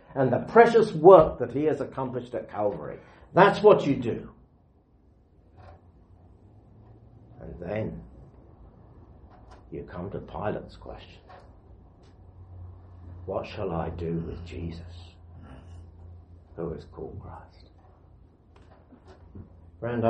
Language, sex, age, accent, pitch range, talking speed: English, male, 60-79, British, 85-120 Hz, 95 wpm